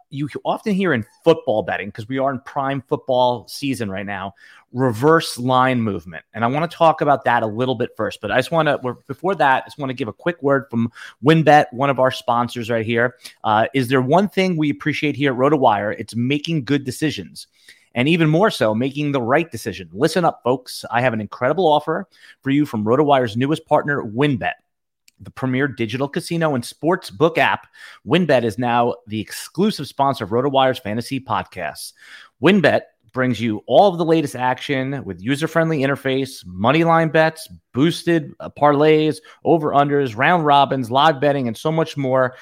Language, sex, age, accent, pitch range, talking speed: English, male, 30-49, American, 120-155 Hz, 190 wpm